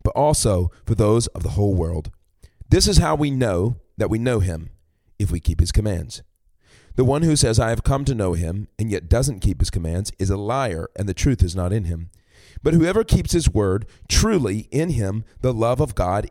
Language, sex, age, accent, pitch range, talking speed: English, male, 40-59, American, 90-130 Hz, 215 wpm